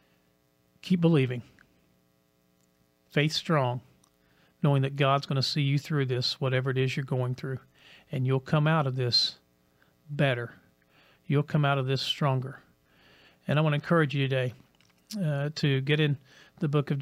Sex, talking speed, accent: male, 160 wpm, American